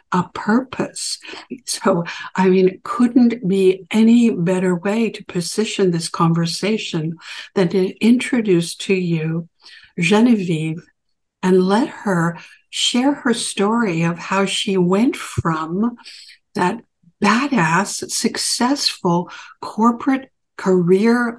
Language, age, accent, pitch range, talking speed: English, 60-79, American, 180-220 Hz, 100 wpm